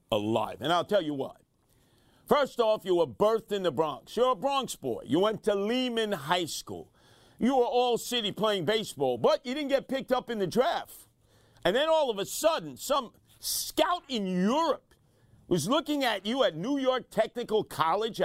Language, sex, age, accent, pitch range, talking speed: English, male, 50-69, American, 185-255 Hz, 190 wpm